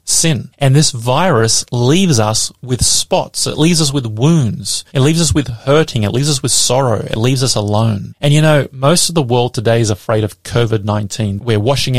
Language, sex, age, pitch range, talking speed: English, male, 30-49, 110-145 Hz, 205 wpm